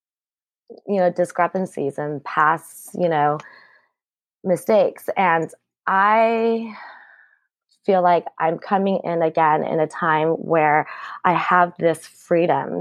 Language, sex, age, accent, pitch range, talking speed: English, female, 20-39, American, 160-185 Hz, 110 wpm